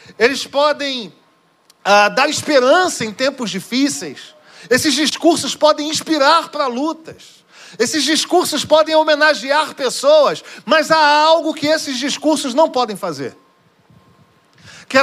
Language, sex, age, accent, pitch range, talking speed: Portuguese, male, 40-59, Brazilian, 235-310 Hz, 115 wpm